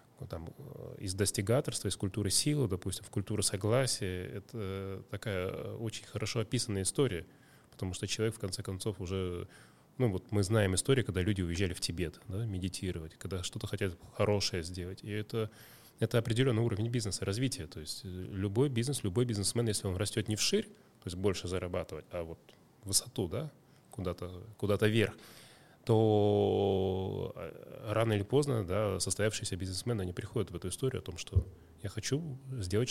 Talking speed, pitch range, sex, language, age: 155 wpm, 95-120 Hz, male, Russian, 20-39